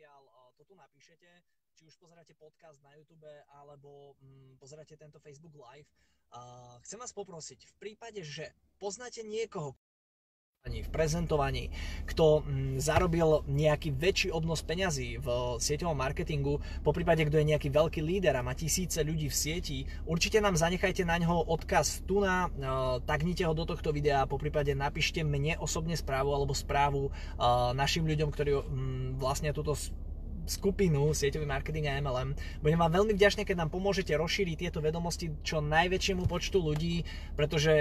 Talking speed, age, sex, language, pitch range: 150 wpm, 20-39, male, Slovak, 140-170 Hz